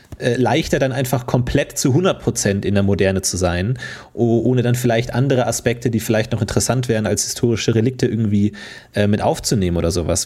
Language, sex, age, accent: German, male, 30-49, German